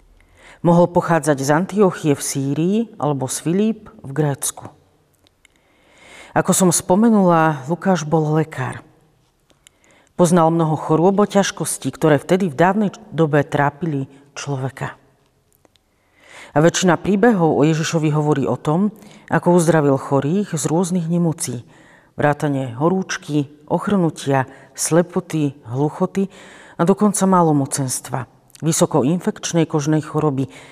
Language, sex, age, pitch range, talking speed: Slovak, female, 40-59, 140-175 Hz, 105 wpm